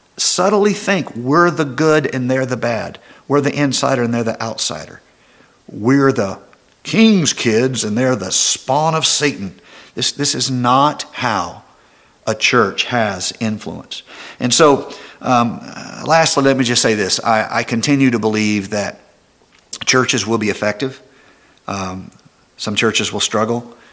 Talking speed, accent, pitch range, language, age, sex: 150 wpm, American, 105-135 Hz, English, 50-69, male